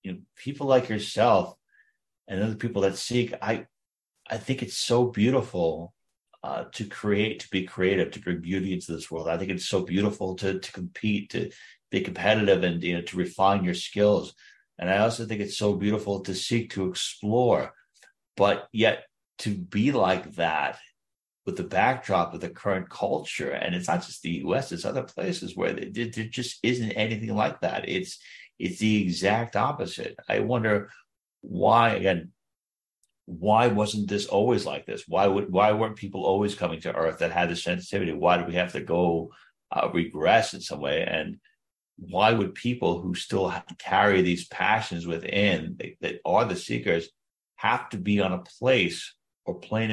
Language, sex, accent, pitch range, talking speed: English, male, American, 95-110 Hz, 180 wpm